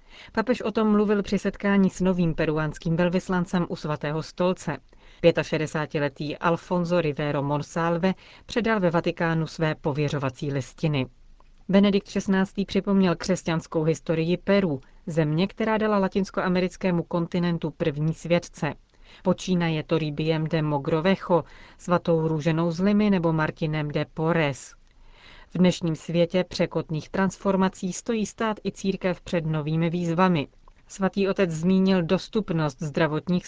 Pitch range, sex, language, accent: 155-190 Hz, female, Czech, native